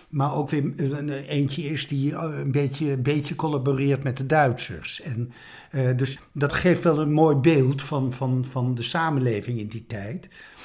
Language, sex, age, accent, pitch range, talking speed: Dutch, male, 60-79, Dutch, 125-150 Hz, 180 wpm